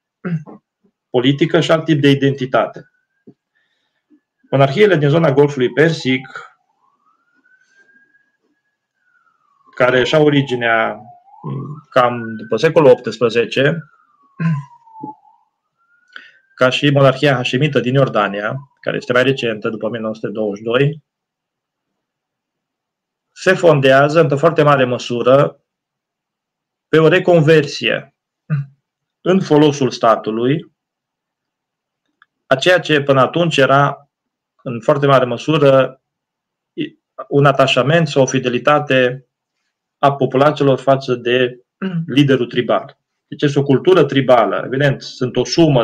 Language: Romanian